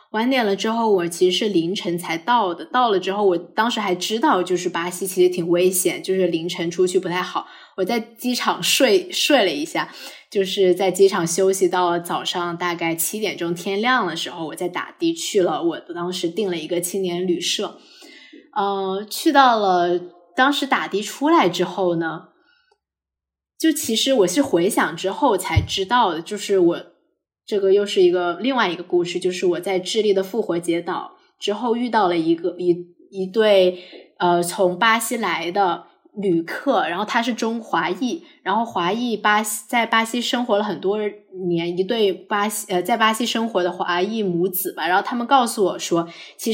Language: Chinese